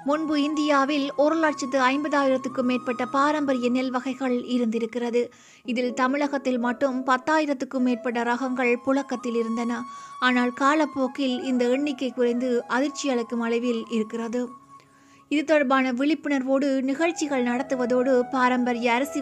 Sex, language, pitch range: female, Tamil, 235-275 Hz